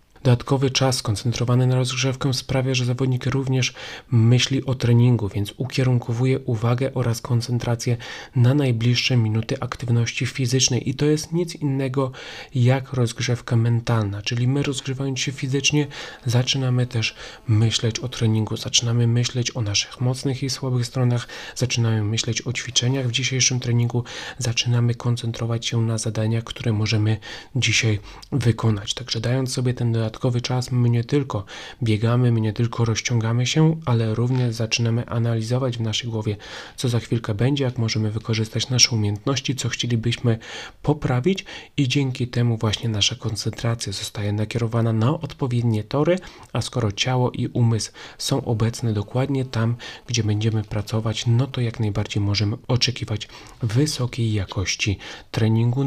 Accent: native